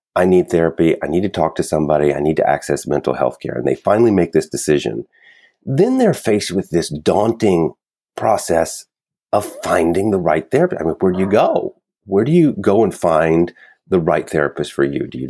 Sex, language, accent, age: male, English, American, 40-59